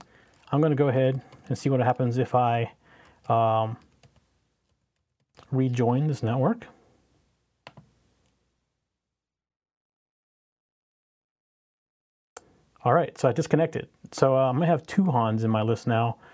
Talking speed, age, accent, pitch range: 115 wpm, 30-49, American, 125-160 Hz